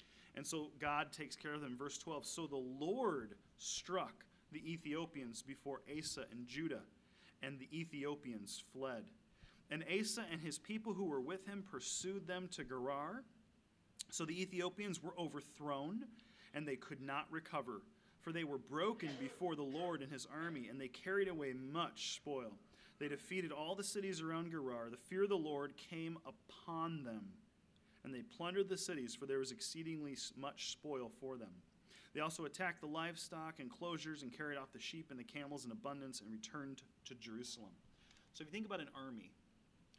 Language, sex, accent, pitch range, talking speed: English, male, American, 135-180 Hz, 175 wpm